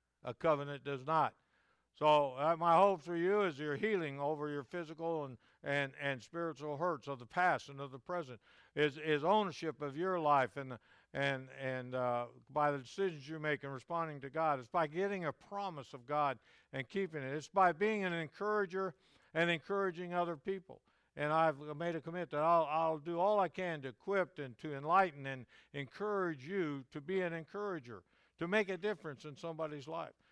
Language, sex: English, male